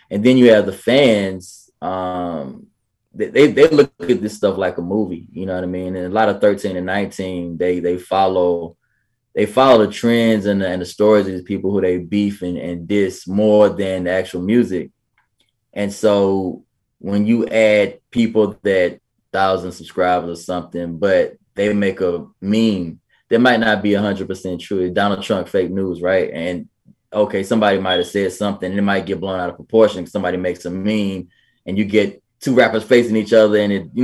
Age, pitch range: 20-39, 90-105 Hz